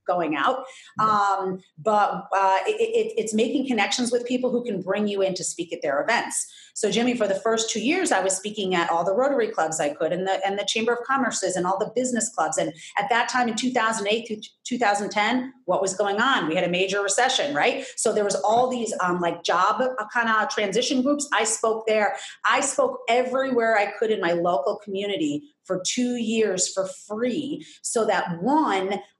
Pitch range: 195-260 Hz